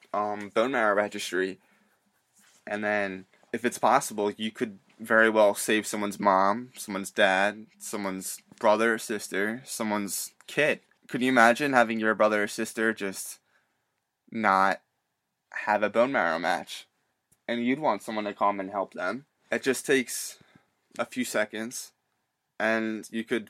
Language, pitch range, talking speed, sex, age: English, 100-115 Hz, 145 wpm, male, 20-39